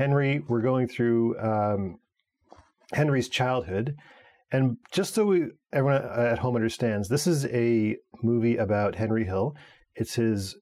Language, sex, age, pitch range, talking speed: English, male, 40-59, 105-130 Hz, 135 wpm